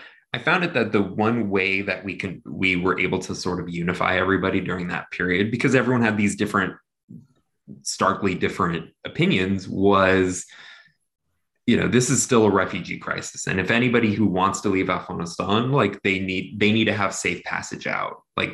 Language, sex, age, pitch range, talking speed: English, male, 20-39, 95-115 Hz, 185 wpm